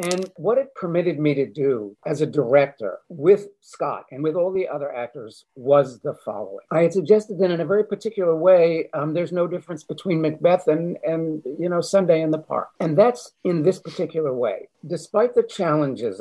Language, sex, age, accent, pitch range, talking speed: English, male, 50-69, American, 155-205 Hz, 195 wpm